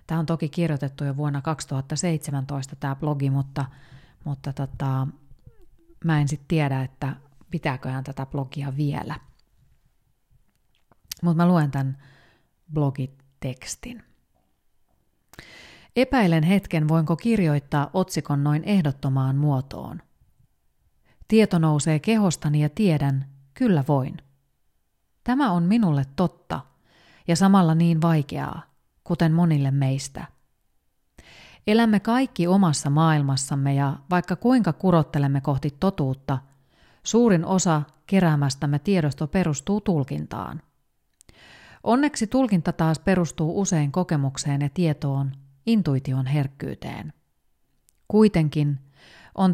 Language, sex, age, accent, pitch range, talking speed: Finnish, female, 30-49, native, 140-180 Hz, 100 wpm